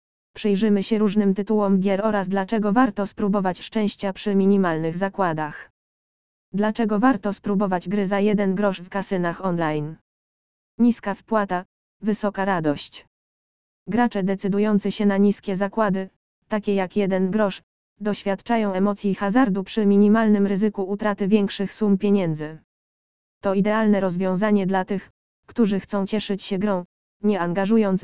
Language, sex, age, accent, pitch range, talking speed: Polish, female, 20-39, native, 190-210 Hz, 125 wpm